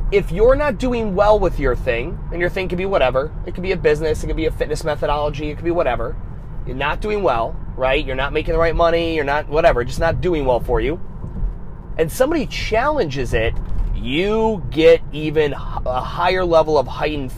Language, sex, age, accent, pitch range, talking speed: English, male, 30-49, American, 140-180 Hz, 210 wpm